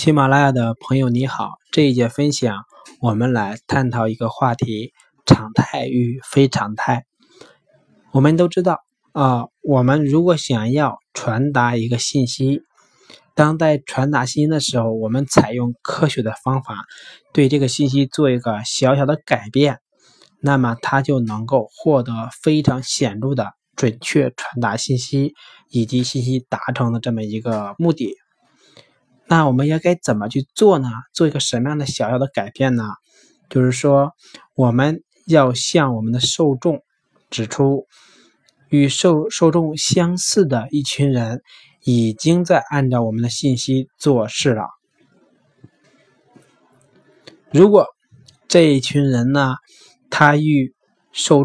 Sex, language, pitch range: male, Chinese, 120-145 Hz